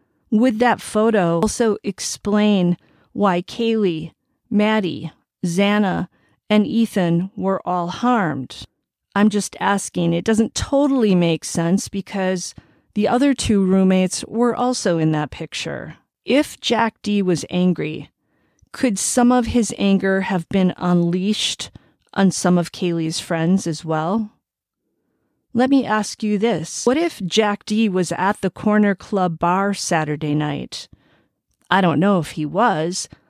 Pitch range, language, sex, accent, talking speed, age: 180-225 Hz, English, female, American, 135 wpm, 40-59